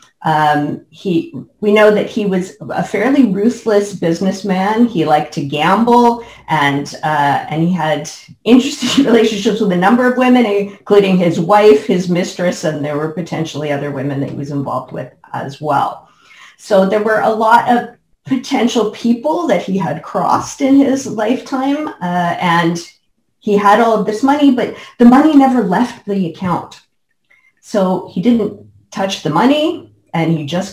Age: 40-59